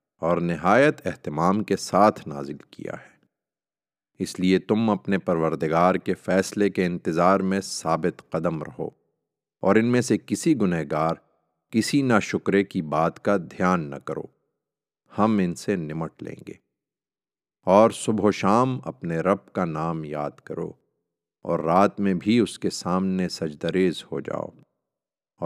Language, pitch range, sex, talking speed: Urdu, 85-110 Hz, male, 145 wpm